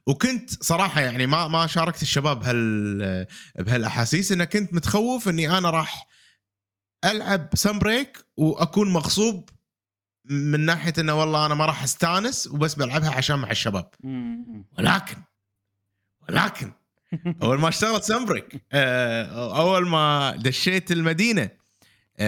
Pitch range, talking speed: 120-185 Hz, 115 wpm